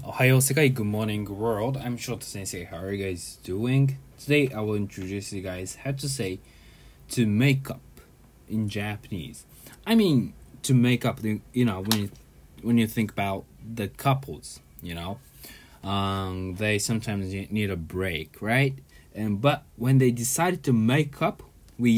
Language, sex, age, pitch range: English, male, 20-39, 95-130 Hz